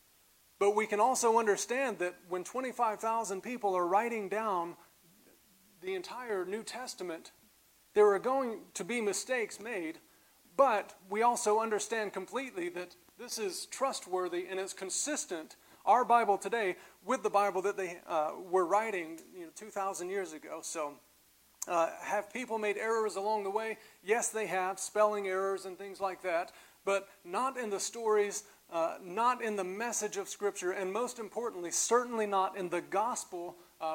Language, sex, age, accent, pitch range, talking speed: English, male, 40-59, American, 185-230 Hz, 160 wpm